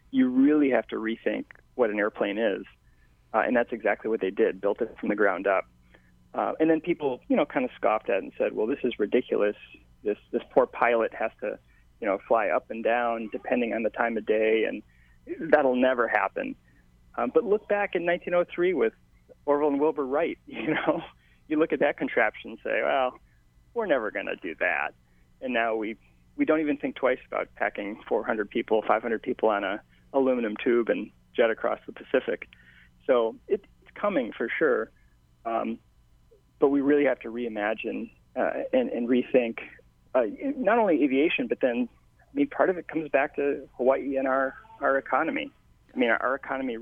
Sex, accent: male, American